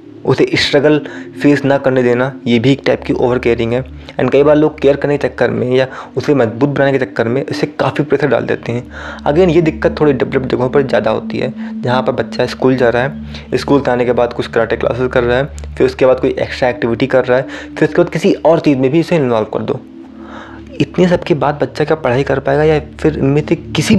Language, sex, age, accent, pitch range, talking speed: Hindi, male, 20-39, native, 120-155 Hz, 240 wpm